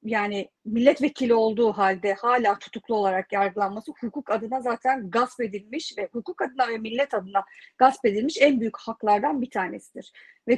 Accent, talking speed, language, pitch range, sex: native, 155 wpm, Turkish, 225-305 Hz, female